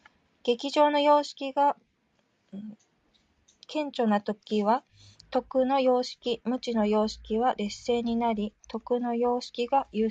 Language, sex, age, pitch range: Japanese, female, 20-39, 220-250 Hz